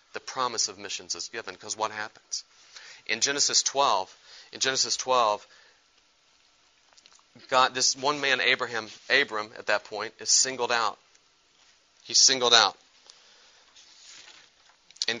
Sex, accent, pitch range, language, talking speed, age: male, American, 125-170 Hz, English, 120 wpm, 30-49